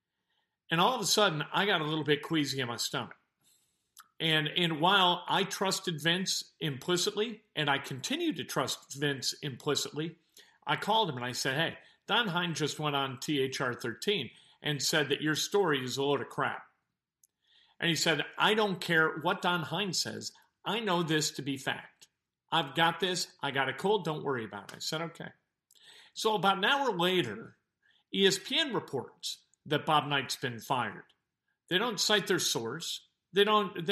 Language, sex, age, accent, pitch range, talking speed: English, male, 50-69, American, 150-205 Hz, 180 wpm